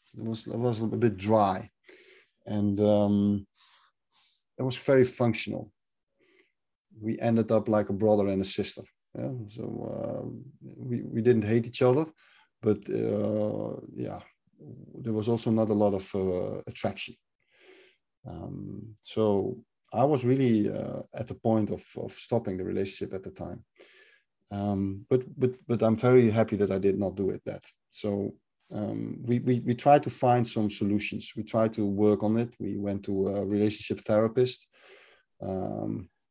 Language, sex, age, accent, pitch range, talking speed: Finnish, male, 50-69, Dutch, 100-120 Hz, 160 wpm